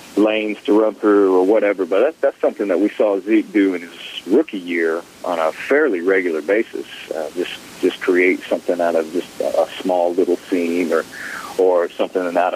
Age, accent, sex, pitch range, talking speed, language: 40-59, American, male, 90-110 Hz, 190 wpm, English